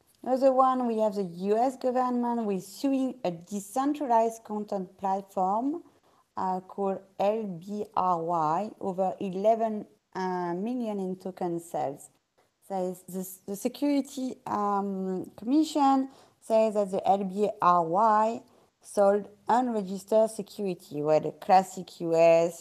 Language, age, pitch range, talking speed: English, 30-49, 185-225 Hz, 110 wpm